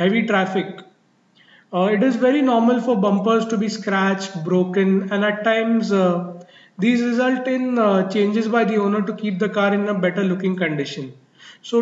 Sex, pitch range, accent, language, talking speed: male, 185-230 Hz, Indian, English, 180 wpm